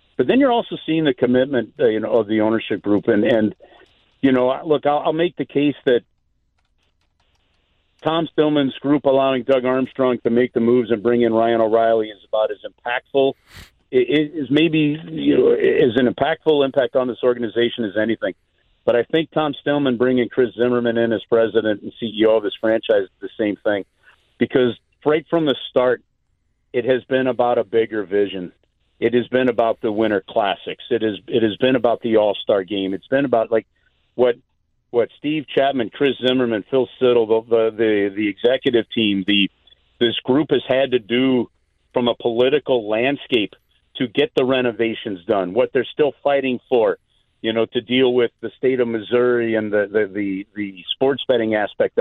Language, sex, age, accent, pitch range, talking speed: English, male, 50-69, American, 110-140 Hz, 185 wpm